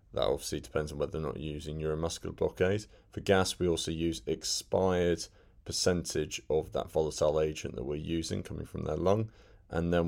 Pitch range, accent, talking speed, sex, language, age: 80-100 Hz, British, 185 wpm, male, English, 30-49